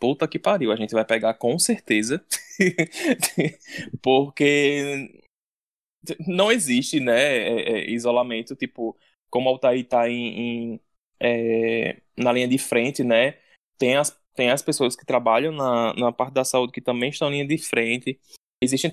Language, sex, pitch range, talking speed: Portuguese, male, 115-150 Hz, 145 wpm